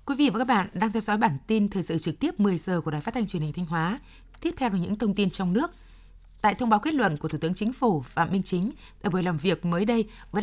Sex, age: female, 20-39